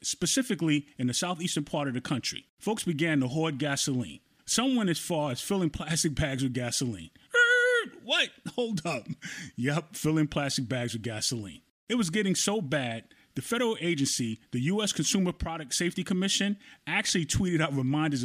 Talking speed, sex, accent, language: 165 wpm, male, American, English